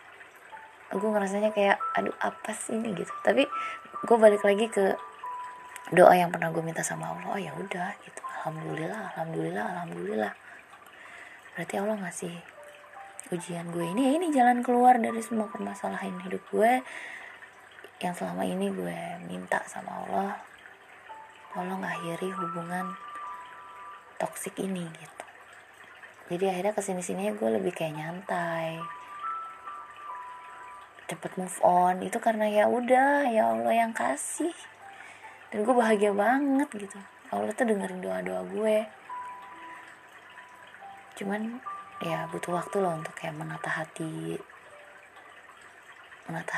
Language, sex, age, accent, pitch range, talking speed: Indonesian, female, 20-39, native, 165-215 Hz, 120 wpm